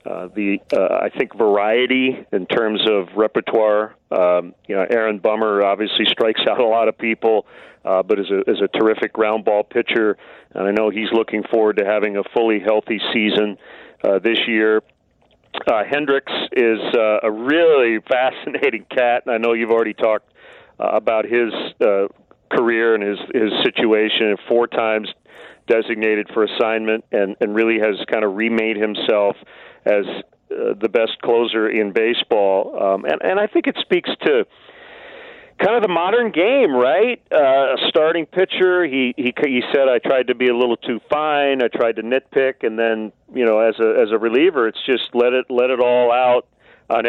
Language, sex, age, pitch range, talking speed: English, male, 40-59, 110-140 Hz, 180 wpm